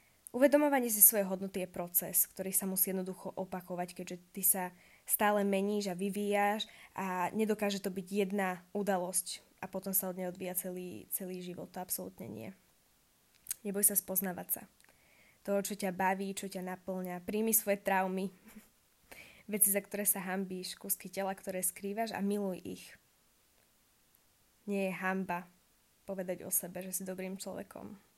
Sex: female